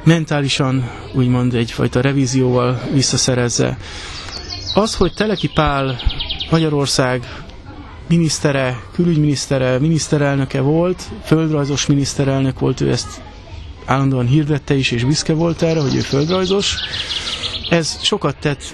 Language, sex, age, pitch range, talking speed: Hungarian, male, 30-49, 130-155 Hz, 100 wpm